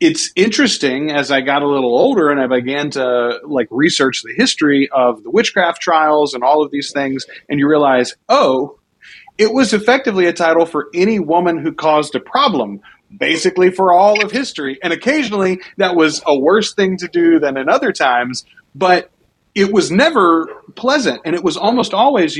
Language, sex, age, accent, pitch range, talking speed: English, male, 30-49, American, 130-175 Hz, 185 wpm